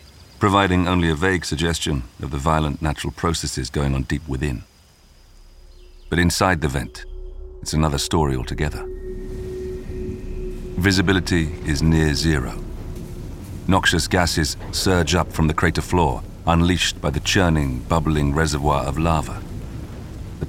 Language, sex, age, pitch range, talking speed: English, male, 40-59, 75-90 Hz, 125 wpm